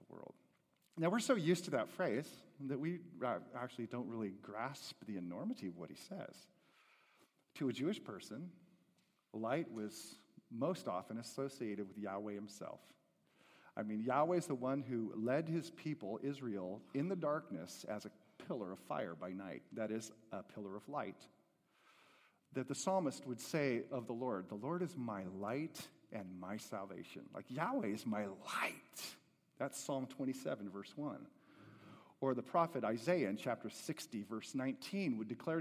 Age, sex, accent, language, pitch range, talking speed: 40-59, male, American, English, 110-170 Hz, 160 wpm